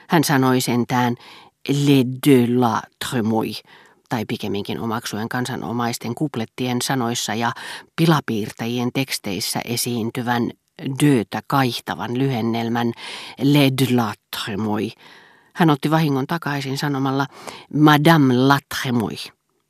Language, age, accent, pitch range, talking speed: Finnish, 40-59, native, 115-140 Hz, 90 wpm